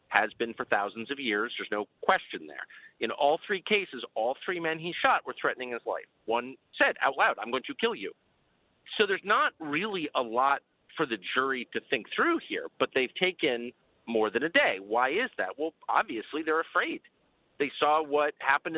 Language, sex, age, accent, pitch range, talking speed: English, male, 40-59, American, 125-210 Hz, 200 wpm